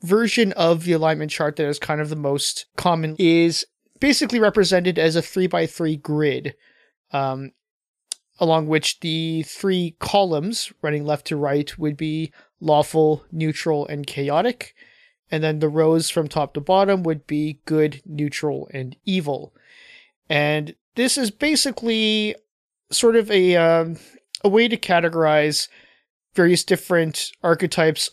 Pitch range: 150-185 Hz